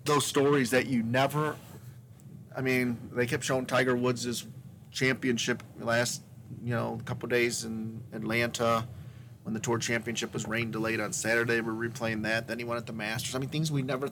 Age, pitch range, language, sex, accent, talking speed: 40-59, 115-140 Hz, English, male, American, 185 wpm